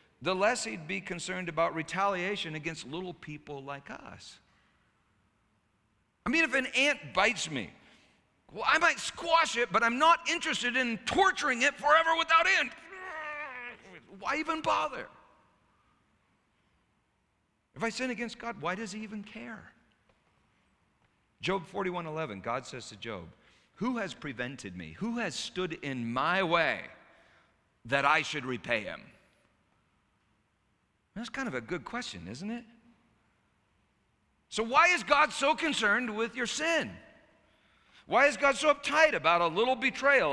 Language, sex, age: English, male, 50-69